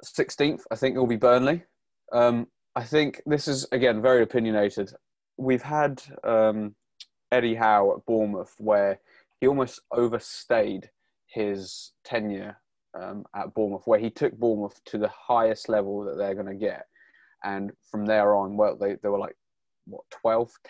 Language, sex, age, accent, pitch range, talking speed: English, male, 20-39, British, 105-120 Hz, 160 wpm